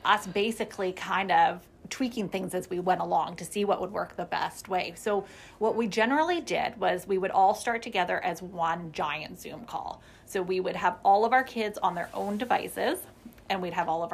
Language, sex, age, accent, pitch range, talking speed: English, female, 30-49, American, 175-210 Hz, 215 wpm